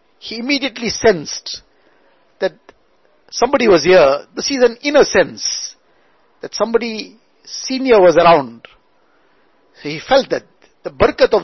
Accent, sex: Indian, male